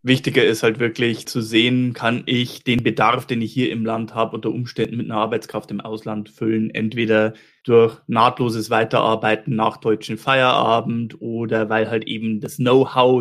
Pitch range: 115-140 Hz